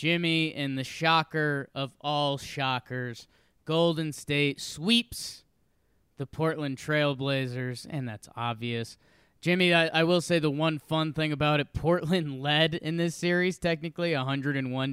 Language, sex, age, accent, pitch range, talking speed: English, male, 20-39, American, 125-170 Hz, 135 wpm